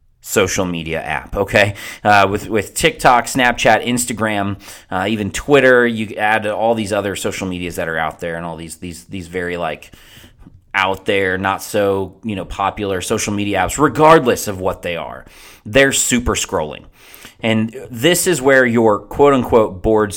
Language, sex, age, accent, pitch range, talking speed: English, male, 30-49, American, 95-125 Hz, 170 wpm